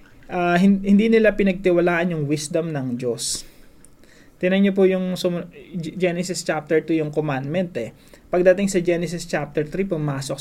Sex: male